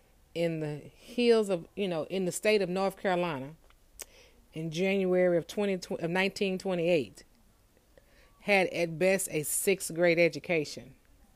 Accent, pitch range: American, 170-215 Hz